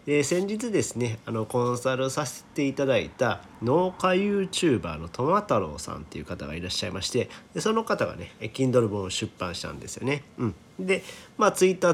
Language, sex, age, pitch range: Japanese, male, 40-59, 100-140 Hz